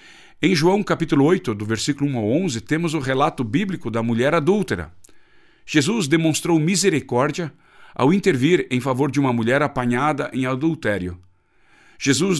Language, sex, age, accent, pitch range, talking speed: Portuguese, male, 50-69, Brazilian, 115-160 Hz, 145 wpm